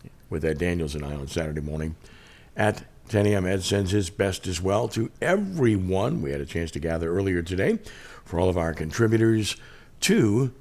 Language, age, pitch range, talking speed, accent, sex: English, 50-69, 80-105 Hz, 185 wpm, American, male